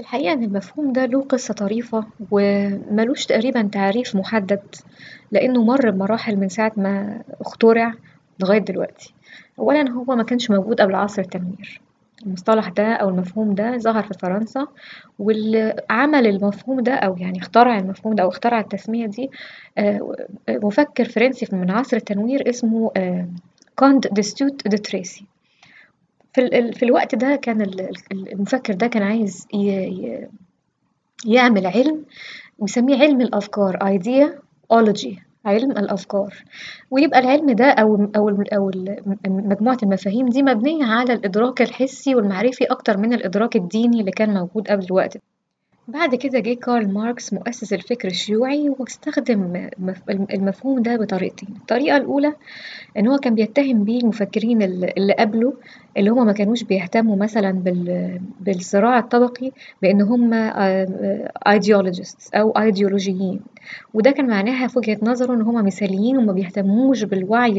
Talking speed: 120 wpm